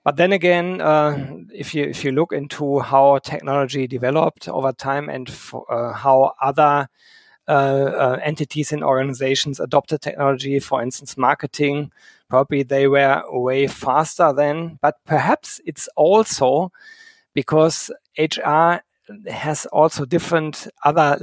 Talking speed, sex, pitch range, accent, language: 130 wpm, male, 135-155 Hz, German, German